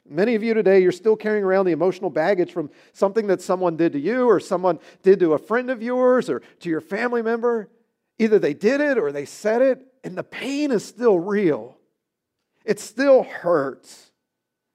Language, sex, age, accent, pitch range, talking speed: English, male, 50-69, American, 140-195 Hz, 195 wpm